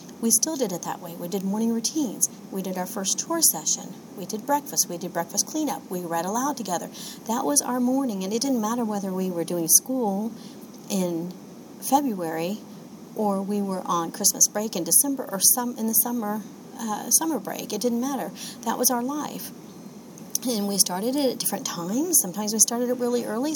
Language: English